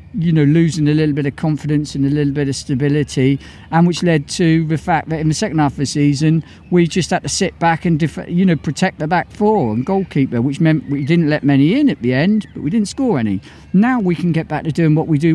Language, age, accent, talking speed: English, 50-69, British, 265 wpm